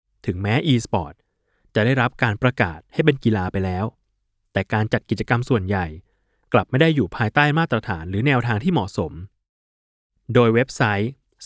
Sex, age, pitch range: male, 20-39, 100-130 Hz